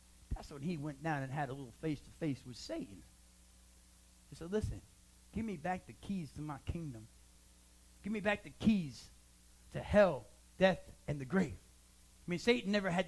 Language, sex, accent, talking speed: English, male, American, 180 wpm